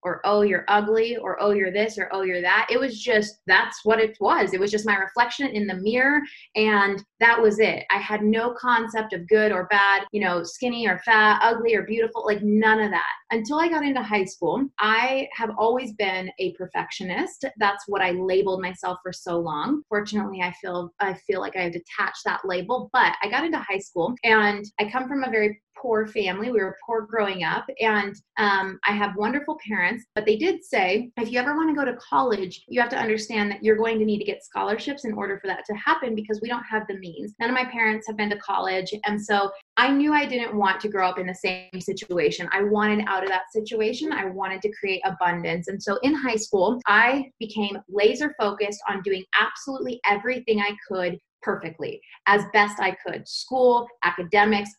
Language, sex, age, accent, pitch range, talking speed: English, female, 20-39, American, 195-230 Hz, 215 wpm